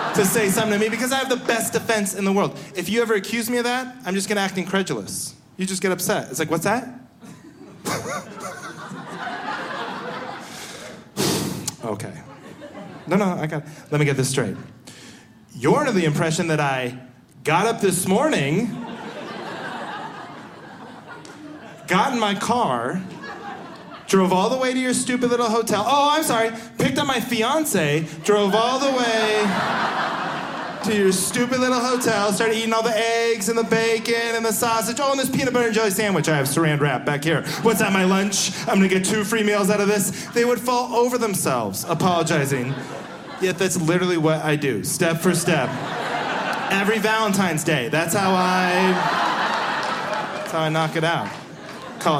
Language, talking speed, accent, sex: English, 170 wpm, American, male